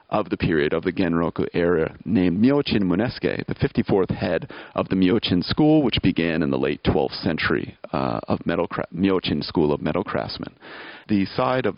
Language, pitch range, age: English, 95-130 Hz, 40-59